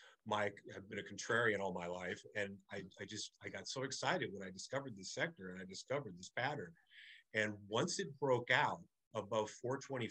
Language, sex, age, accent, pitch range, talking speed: English, male, 50-69, American, 95-130 Hz, 200 wpm